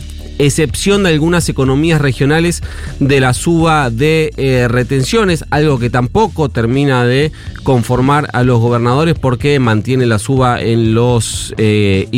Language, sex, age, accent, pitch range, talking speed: Spanish, male, 30-49, Argentinian, 110-145 Hz, 135 wpm